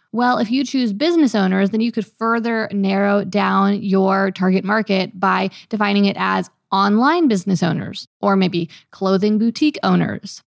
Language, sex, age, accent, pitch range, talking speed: English, female, 20-39, American, 195-240 Hz, 155 wpm